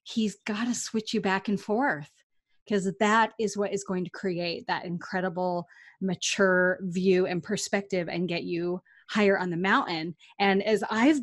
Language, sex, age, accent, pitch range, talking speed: English, female, 30-49, American, 185-240 Hz, 170 wpm